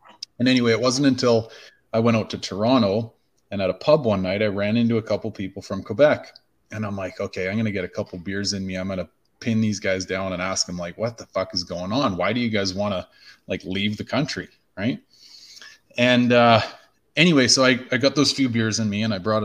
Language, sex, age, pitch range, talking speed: English, male, 30-49, 110-140 Hz, 245 wpm